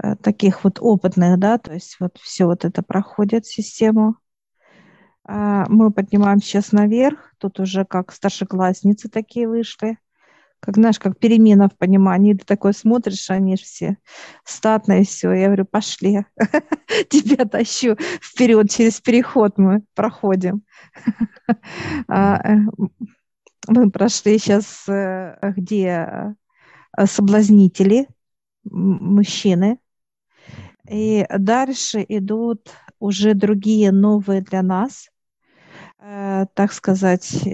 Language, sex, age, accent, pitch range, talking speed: Russian, female, 50-69, native, 195-225 Hz, 100 wpm